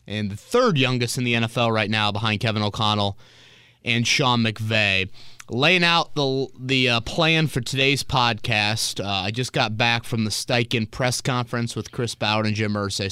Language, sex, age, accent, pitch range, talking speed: English, male, 30-49, American, 110-135 Hz, 185 wpm